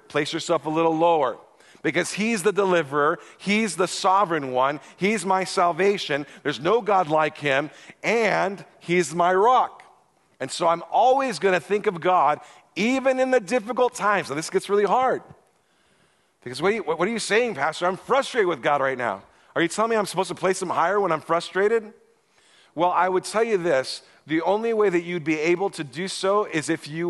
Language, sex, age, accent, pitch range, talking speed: English, male, 40-59, American, 155-200 Hz, 195 wpm